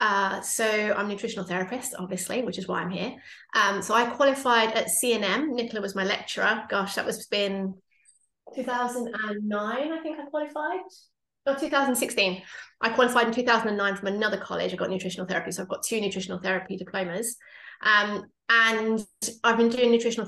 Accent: British